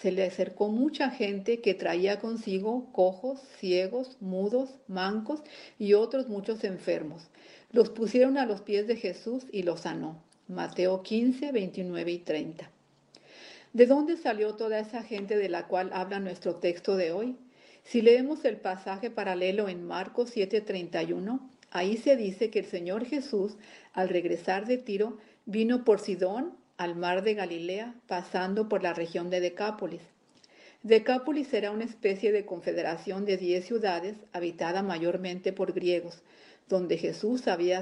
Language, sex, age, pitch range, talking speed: Spanish, female, 50-69, 180-230 Hz, 150 wpm